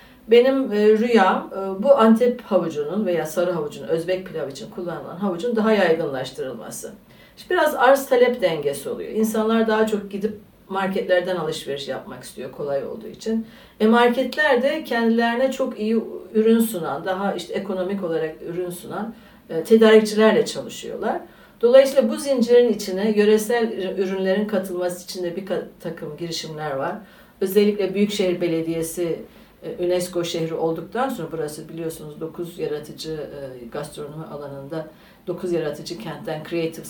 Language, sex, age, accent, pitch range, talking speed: Turkish, female, 60-79, native, 170-225 Hz, 125 wpm